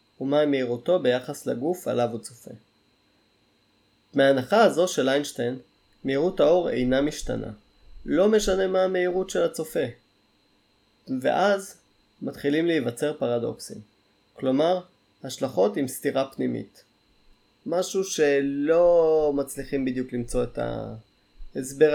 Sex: male